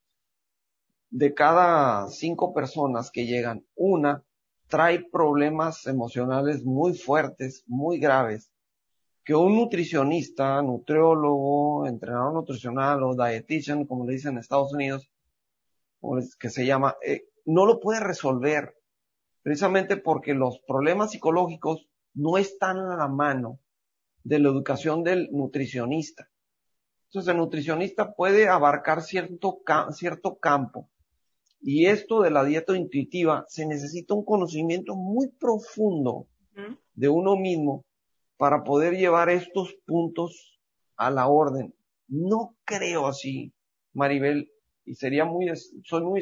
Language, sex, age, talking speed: Spanish, male, 40-59, 120 wpm